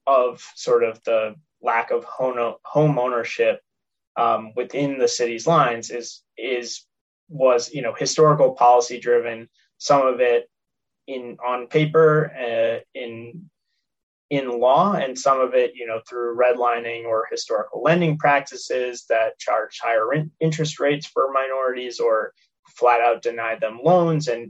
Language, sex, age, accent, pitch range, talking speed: English, male, 20-39, American, 125-165 Hz, 140 wpm